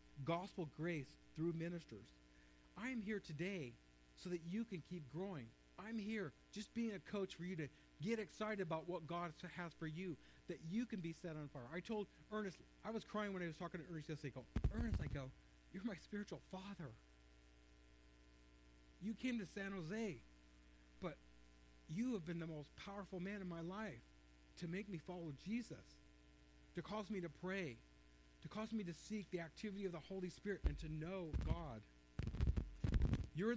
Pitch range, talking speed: 130-200 Hz, 180 wpm